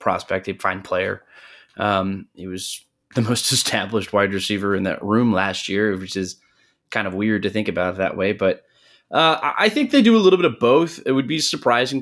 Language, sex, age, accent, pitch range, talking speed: English, male, 20-39, American, 100-135 Hz, 215 wpm